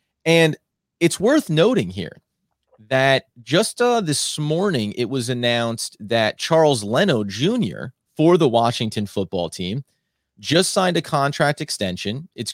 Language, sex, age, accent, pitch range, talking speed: English, male, 30-49, American, 115-160 Hz, 135 wpm